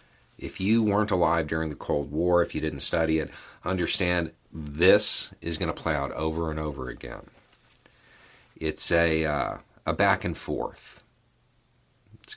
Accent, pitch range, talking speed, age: American, 75-90 Hz, 155 wpm, 50-69